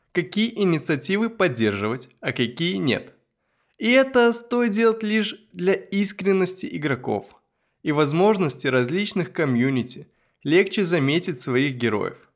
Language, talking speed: Russian, 105 wpm